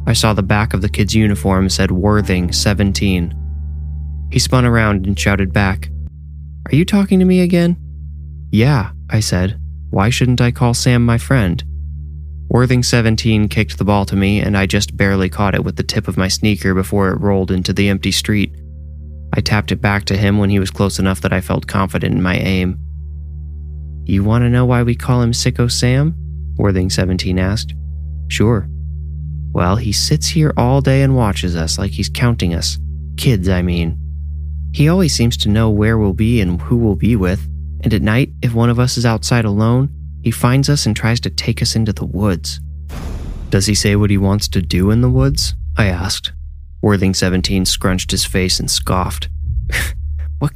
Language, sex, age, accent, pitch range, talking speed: English, male, 20-39, American, 75-110 Hz, 190 wpm